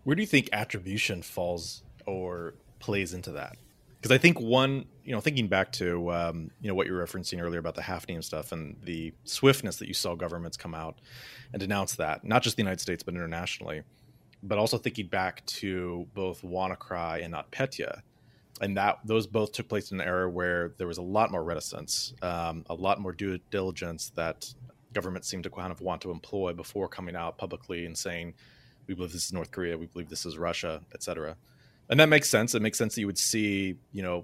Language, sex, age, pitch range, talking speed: English, male, 30-49, 90-115 Hz, 215 wpm